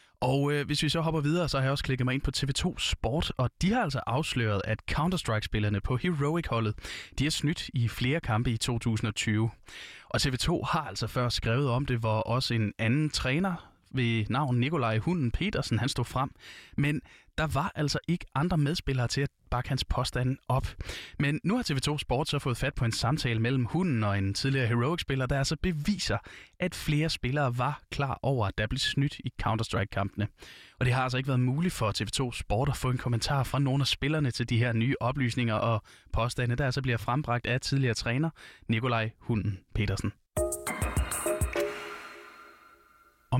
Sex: male